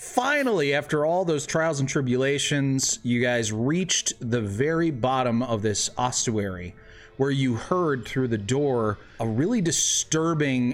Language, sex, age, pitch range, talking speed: English, male, 30-49, 110-150 Hz, 140 wpm